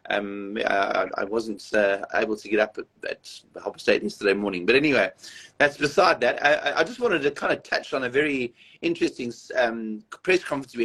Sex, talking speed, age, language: male, 200 wpm, 30-49, English